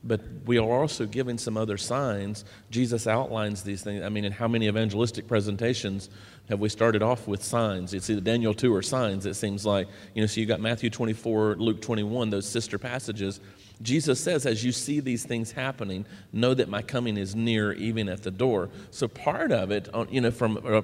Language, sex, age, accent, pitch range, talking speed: English, male, 40-59, American, 105-140 Hz, 210 wpm